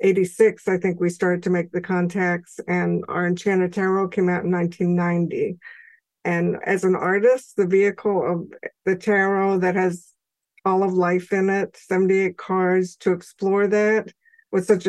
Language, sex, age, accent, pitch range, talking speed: English, female, 50-69, American, 180-205 Hz, 160 wpm